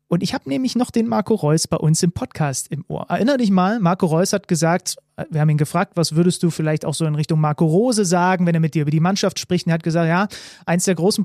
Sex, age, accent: male, 30-49, German